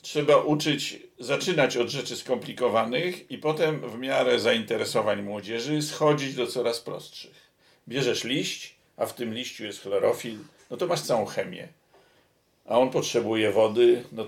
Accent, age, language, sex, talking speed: native, 50-69, Polish, male, 145 wpm